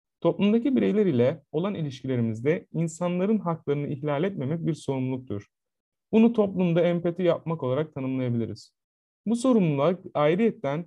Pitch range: 130-190 Hz